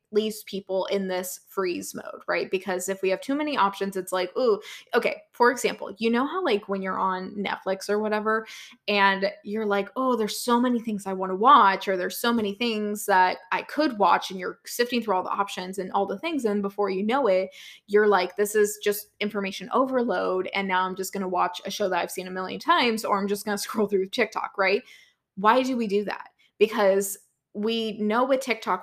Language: English